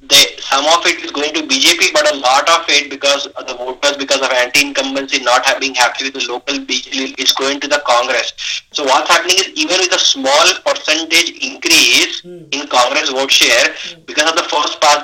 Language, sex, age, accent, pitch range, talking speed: English, male, 20-39, Indian, 140-185 Hz, 195 wpm